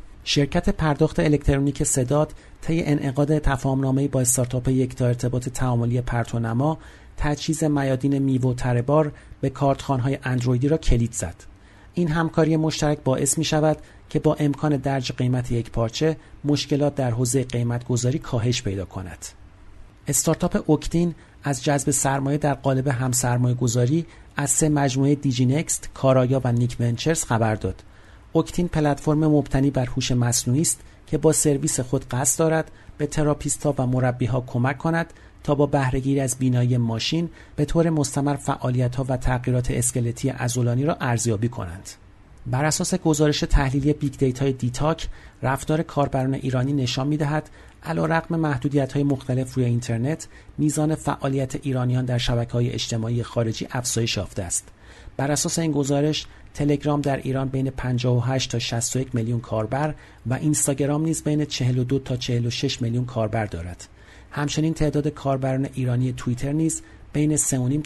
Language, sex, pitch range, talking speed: Persian, male, 120-150 Hz, 140 wpm